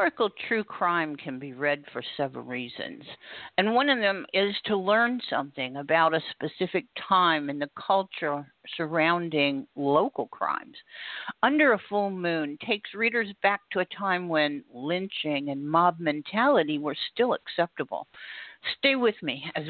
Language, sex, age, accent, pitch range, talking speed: English, female, 50-69, American, 150-210 Hz, 145 wpm